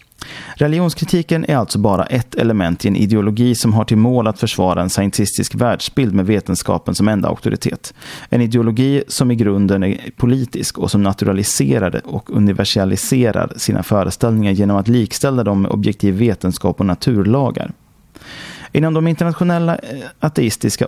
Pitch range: 100-125 Hz